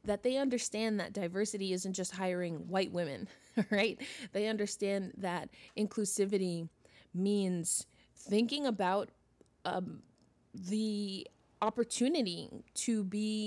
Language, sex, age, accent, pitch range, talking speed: English, female, 20-39, American, 190-230 Hz, 105 wpm